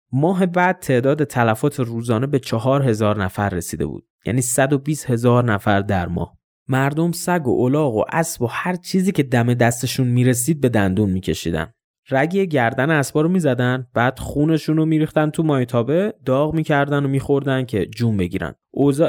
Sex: male